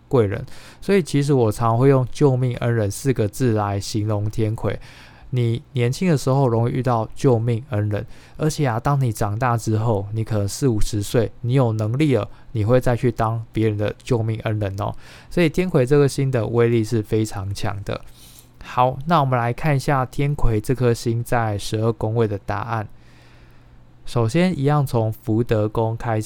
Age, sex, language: 20-39, male, Chinese